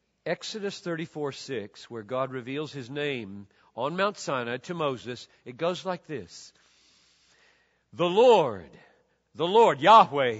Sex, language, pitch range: male, English, 165-240 Hz